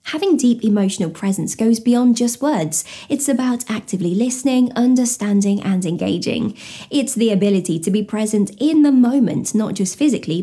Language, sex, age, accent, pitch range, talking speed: English, female, 20-39, British, 205-275 Hz, 155 wpm